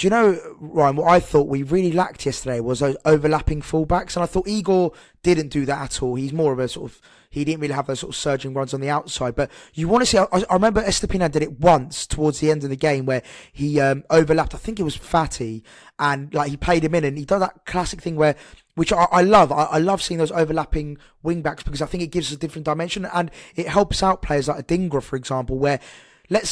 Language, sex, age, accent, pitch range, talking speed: English, male, 20-39, British, 140-180 Hz, 255 wpm